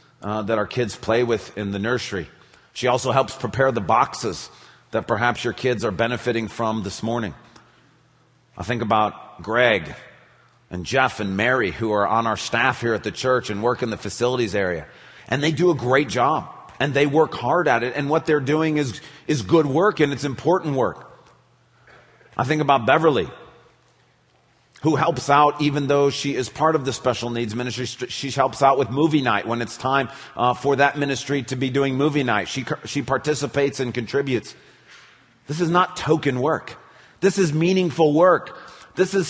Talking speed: 185 wpm